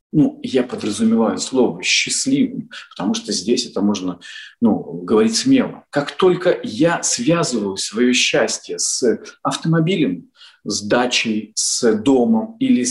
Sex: male